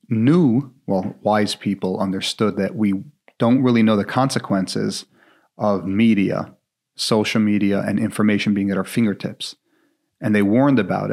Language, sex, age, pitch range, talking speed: English, male, 30-49, 100-120 Hz, 140 wpm